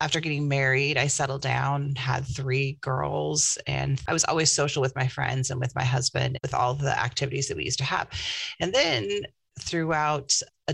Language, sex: English, female